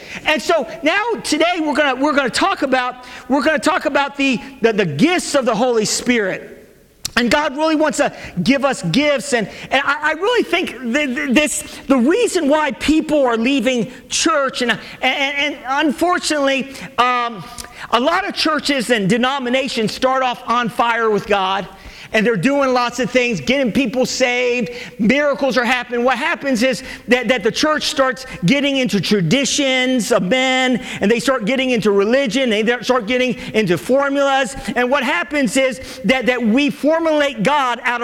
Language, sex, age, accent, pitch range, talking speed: English, male, 50-69, American, 240-295 Hz, 175 wpm